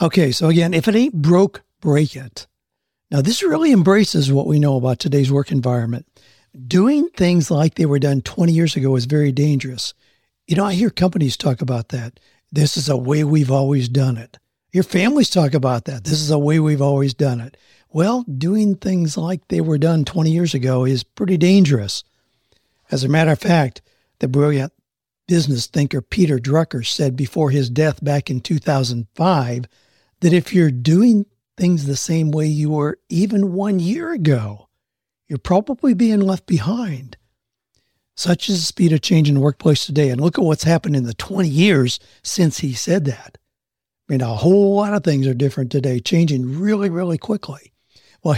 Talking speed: 185 wpm